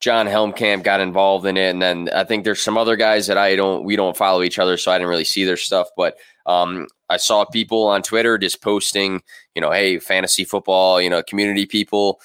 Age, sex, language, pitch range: 20-39, male, English, 95-110 Hz